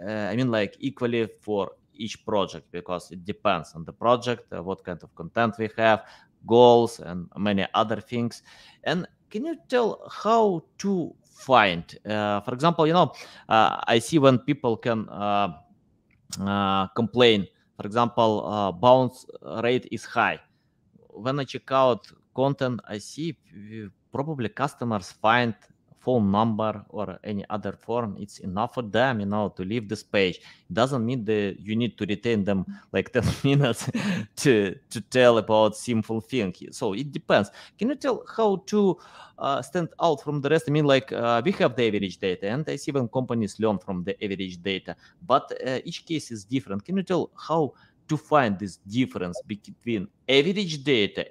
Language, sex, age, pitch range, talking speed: English, male, 30-49, 105-135 Hz, 175 wpm